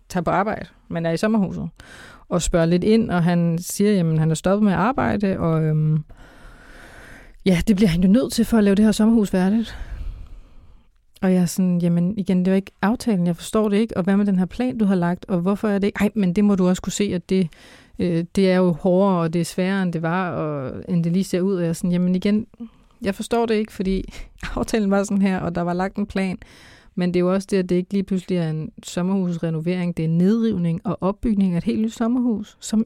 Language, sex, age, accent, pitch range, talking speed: Danish, female, 30-49, native, 175-205 Hz, 250 wpm